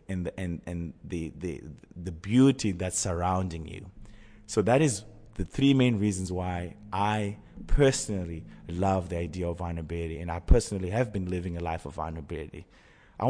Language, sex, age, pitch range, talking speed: English, male, 30-49, 90-110 Hz, 155 wpm